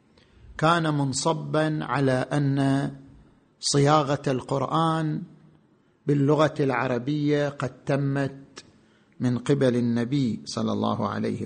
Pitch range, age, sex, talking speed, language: 130-155 Hz, 50-69, male, 85 wpm, Arabic